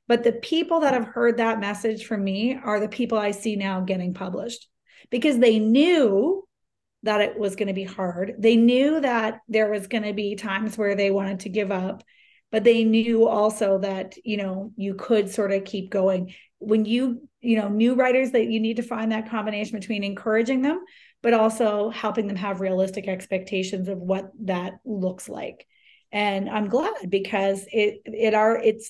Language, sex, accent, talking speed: English, female, American, 190 wpm